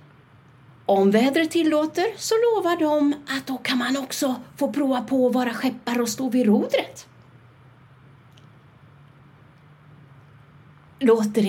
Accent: native